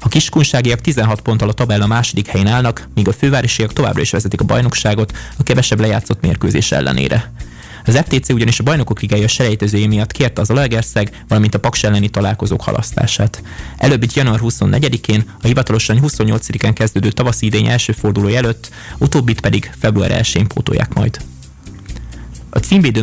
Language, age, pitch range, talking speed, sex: Hungarian, 20-39, 105-120 Hz, 155 wpm, male